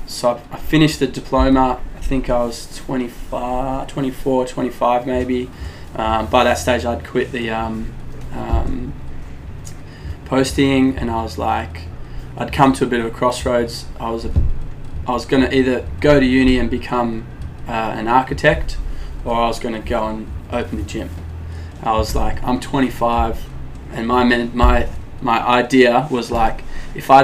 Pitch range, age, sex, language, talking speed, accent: 115-125 Hz, 20-39, male, English, 160 wpm, Australian